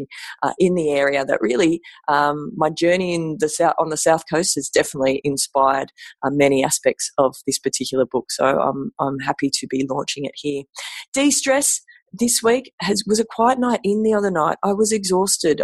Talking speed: 190 wpm